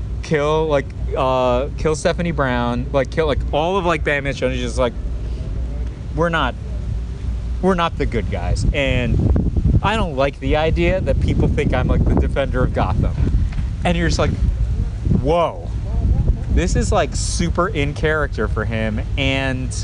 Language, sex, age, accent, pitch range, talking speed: English, male, 30-49, American, 95-135 Hz, 160 wpm